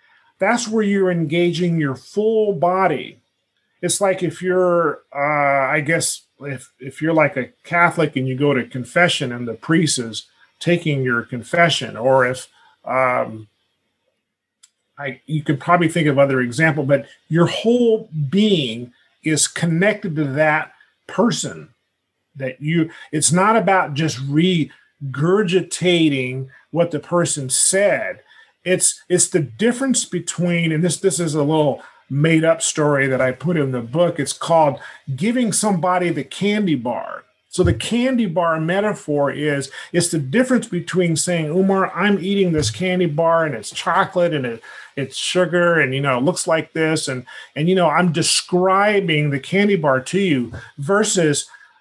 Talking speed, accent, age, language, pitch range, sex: 155 wpm, American, 40-59, English, 140-185 Hz, male